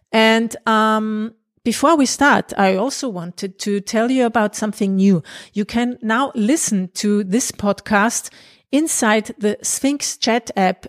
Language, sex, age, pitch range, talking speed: English, female, 40-59, 200-240 Hz, 145 wpm